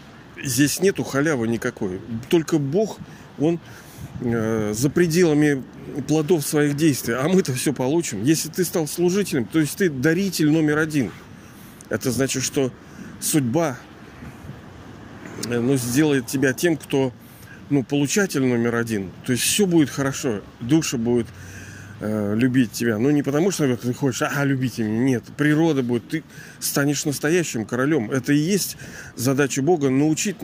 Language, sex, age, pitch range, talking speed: Russian, male, 40-59, 120-155 Hz, 145 wpm